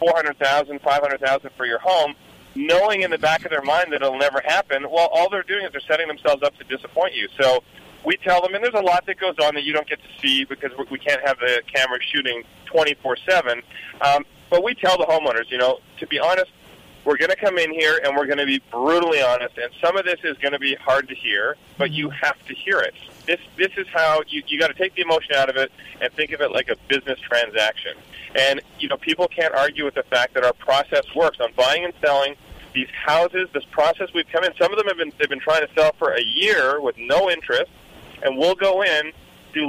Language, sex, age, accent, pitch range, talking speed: English, male, 40-59, American, 135-180 Hz, 245 wpm